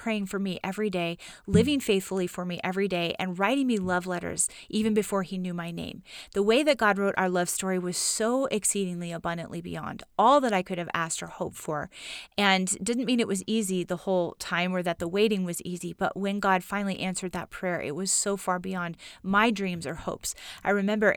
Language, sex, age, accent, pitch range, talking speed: English, female, 30-49, American, 175-205 Hz, 220 wpm